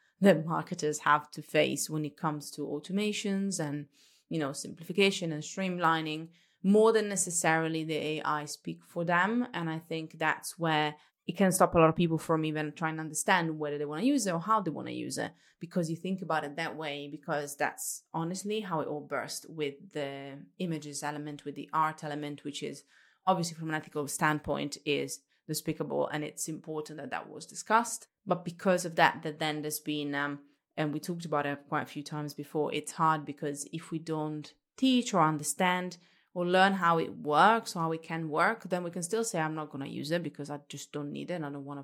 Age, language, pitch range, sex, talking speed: 20-39, English, 150-180 Hz, female, 215 wpm